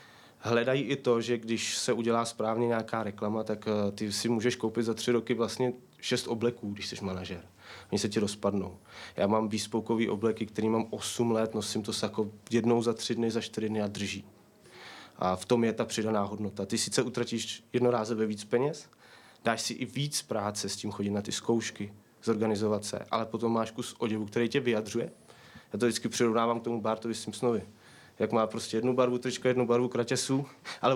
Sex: male